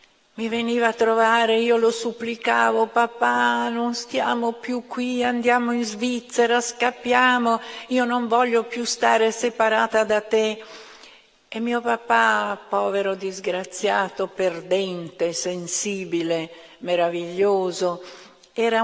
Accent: native